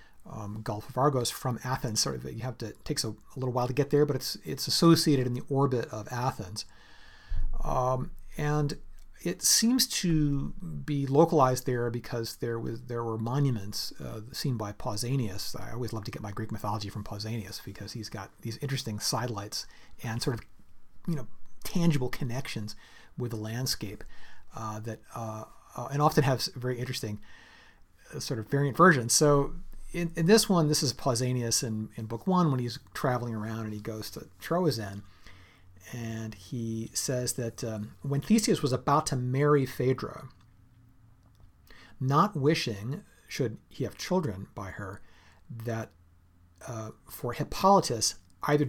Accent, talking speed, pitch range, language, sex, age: American, 165 wpm, 105-140 Hz, English, male, 40-59